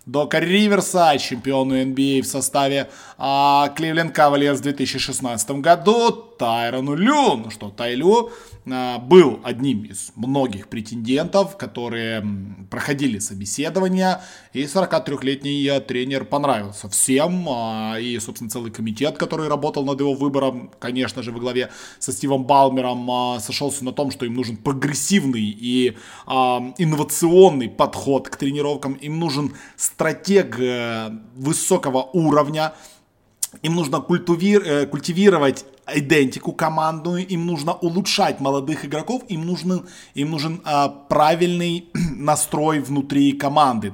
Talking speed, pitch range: 115 wpm, 125-160 Hz